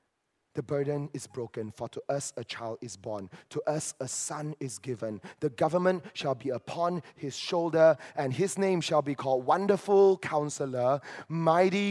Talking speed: 165 wpm